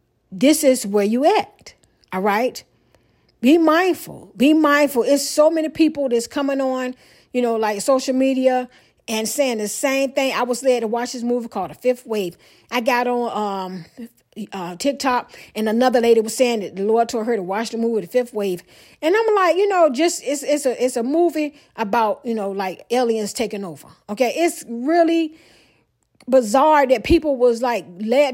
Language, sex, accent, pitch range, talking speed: English, female, American, 225-290 Hz, 190 wpm